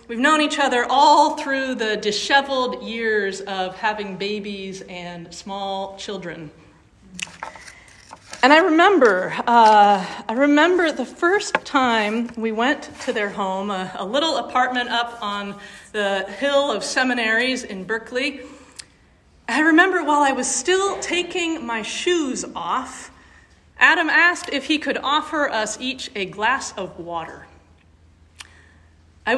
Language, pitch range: English, 200-280 Hz